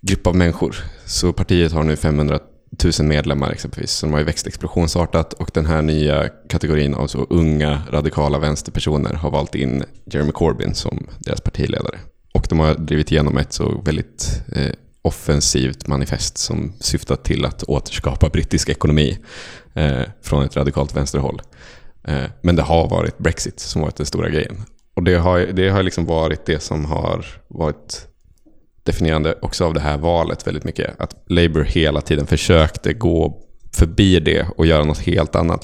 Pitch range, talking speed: 75-85 Hz, 170 wpm